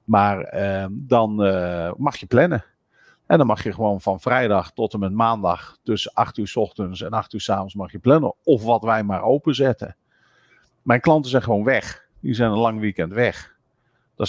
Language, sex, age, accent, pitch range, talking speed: Dutch, male, 50-69, Dutch, 100-115 Hz, 195 wpm